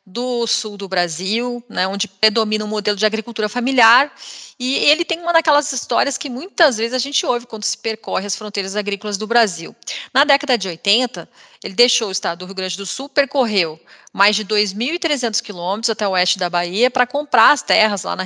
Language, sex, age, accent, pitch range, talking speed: English, female, 30-49, Brazilian, 200-250 Hz, 200 wpm